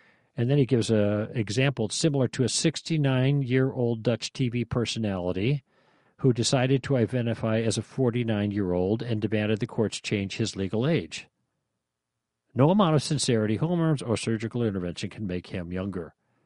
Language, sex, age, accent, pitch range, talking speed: English, male, 50-69, American, 95-135 Hz, 150 wpm